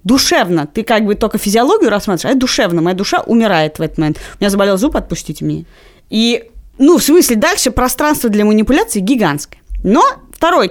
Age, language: 30-49, Russian